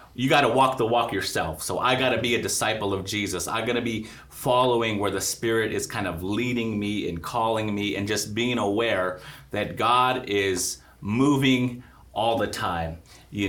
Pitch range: 95-120 Hz